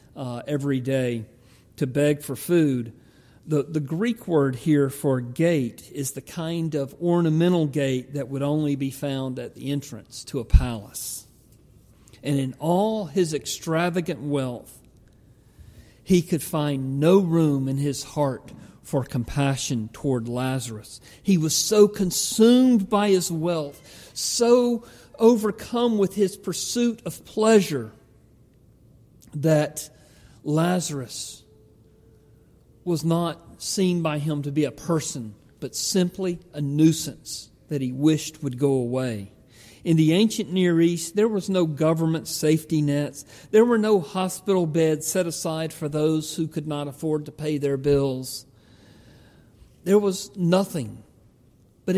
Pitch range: 130-170 Hz